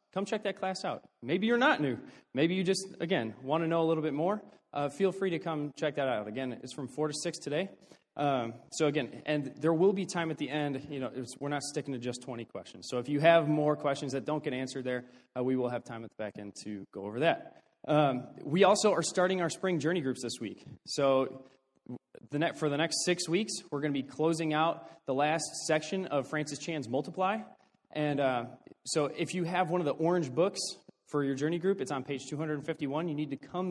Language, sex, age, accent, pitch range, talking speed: English, male, 20-39, American, 130-170 Hz, 240 wpm